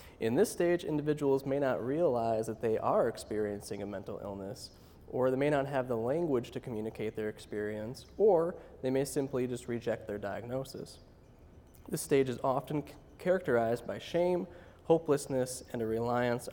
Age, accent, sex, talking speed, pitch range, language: 20-39, American, male, 165 wpm, 110-140 Hz, English